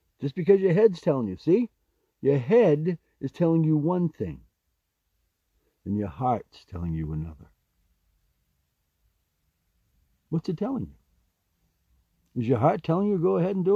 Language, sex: English, male